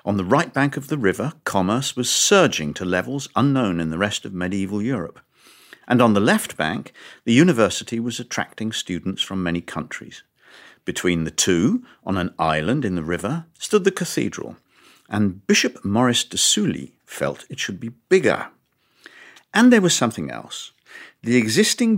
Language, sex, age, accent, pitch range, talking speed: English, male, 50-69, British, 95-135 Hz, 165 wpm